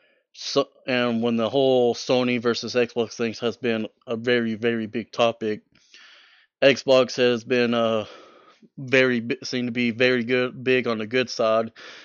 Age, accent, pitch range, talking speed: 30-49, American, 110-130 Hz, 160 wpm